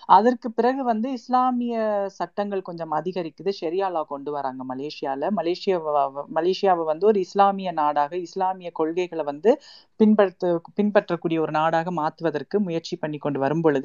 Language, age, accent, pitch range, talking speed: Tamil, 30-49, native, 155-205 Hz, 120 wpm